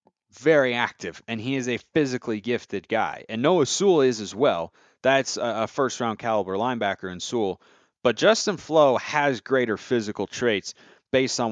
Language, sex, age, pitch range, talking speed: English, male, 30-49, 110-135 Hz, 165 wpm